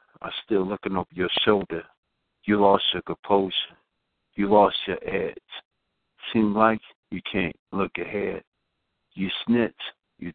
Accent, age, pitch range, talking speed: American, 50-69, 95-110 Hz, 135 wpm